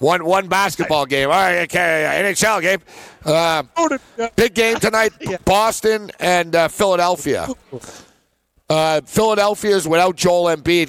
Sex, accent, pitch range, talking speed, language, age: male, American, 145-195 Hz, 120 wpm, English, 50-69